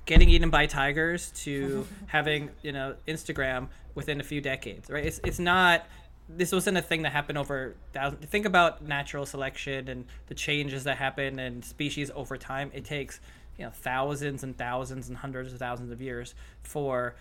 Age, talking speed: 20-39, 180 wpm